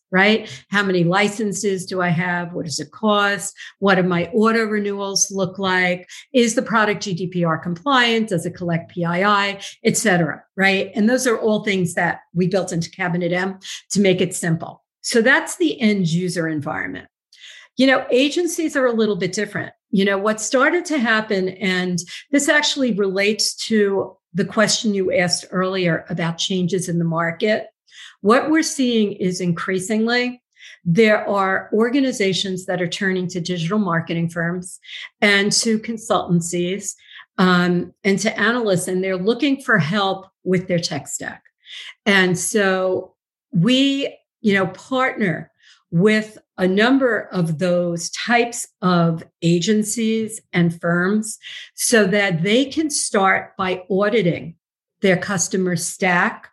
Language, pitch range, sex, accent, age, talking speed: English, 180-220 Hz, female, American, 50-69, 145 wpm